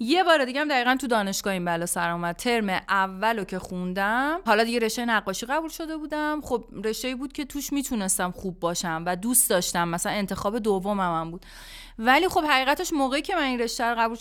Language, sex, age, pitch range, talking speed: Persian, female, 30-49, 200-275 Hz, 200 wpm